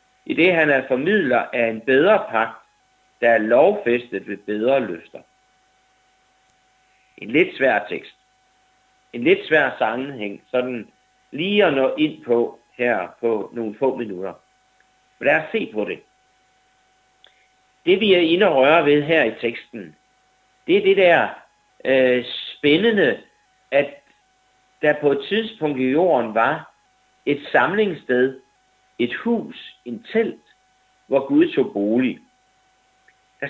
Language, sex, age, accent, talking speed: Danish, male, 60-79, native, 135 wpm